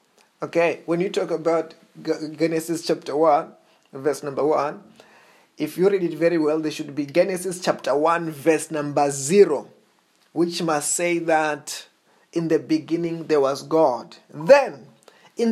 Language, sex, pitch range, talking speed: English, male, 170-240 Hz, 145 wpm